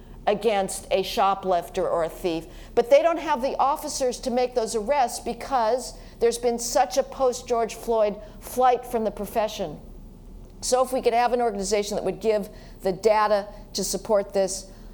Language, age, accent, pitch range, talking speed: English, 50-69, American, 200-250 Hz, 175 wpm